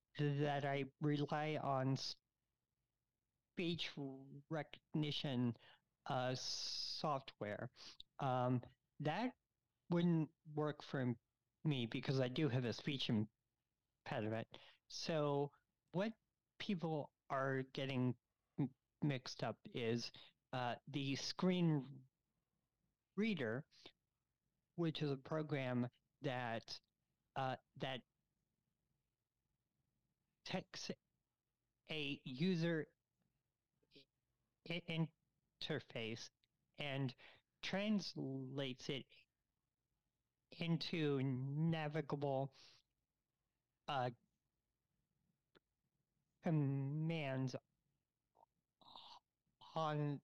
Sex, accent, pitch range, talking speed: male, American, 125-155 Hz, 65 wpm